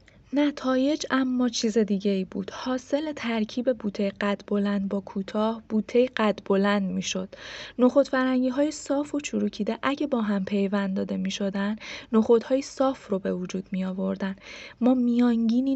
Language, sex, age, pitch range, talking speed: Persian, female, 20-39, 200-255 Hz, 140 wpm